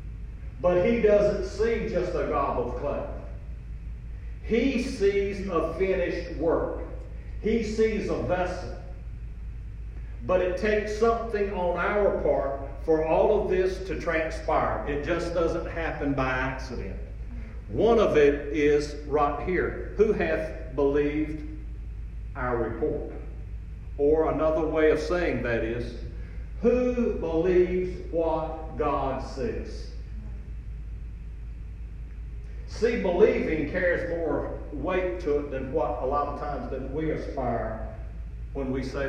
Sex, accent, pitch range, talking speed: male, American, 130-185 Hz, 120 wpm